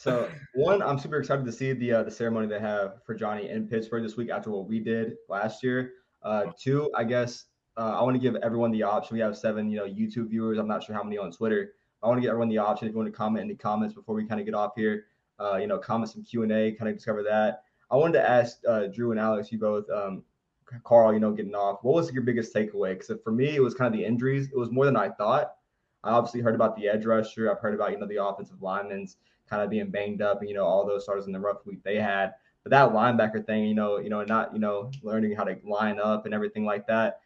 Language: English